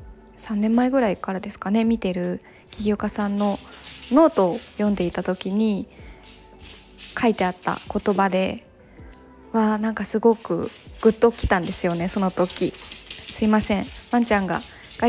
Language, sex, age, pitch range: Japanese, female, 20-39, 190-230 Hz